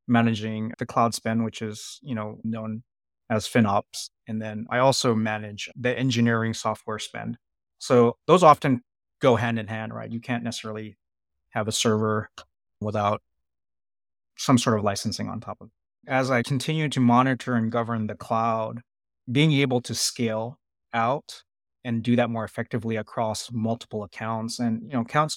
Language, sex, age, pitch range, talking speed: English, male, 20-39, 110-125 Hz, 165 wpm